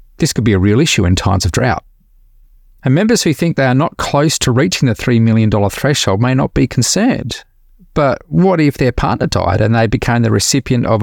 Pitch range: 100-130 Hz